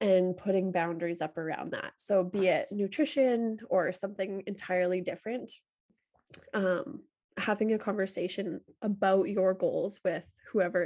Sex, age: female, 20-39